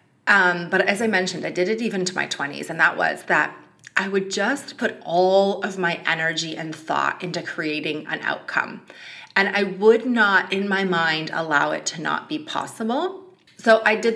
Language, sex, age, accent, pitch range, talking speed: English, female, 30-49, American, 165-220 Hz, 195 wpm